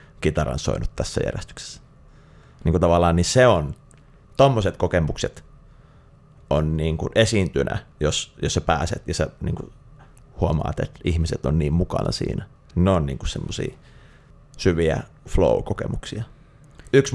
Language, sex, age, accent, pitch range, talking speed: Finnish, male, 30-49, native, 80-105 Hz, 135 wpm